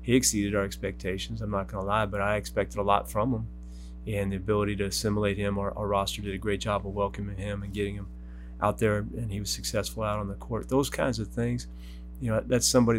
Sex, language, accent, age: male, English, American, 30-49